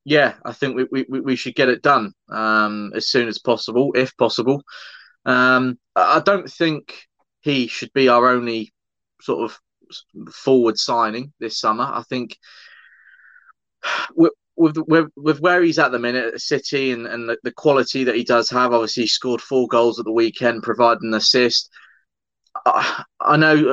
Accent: British